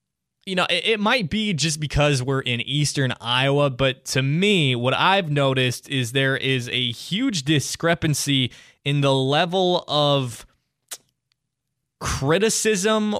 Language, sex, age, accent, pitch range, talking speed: English, male, 20-39, American, 125-160 Hz, 125 wpm